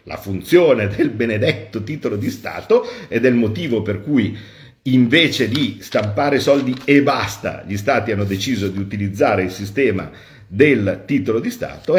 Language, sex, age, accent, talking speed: Italian, male, 50-69, native, 150 wpm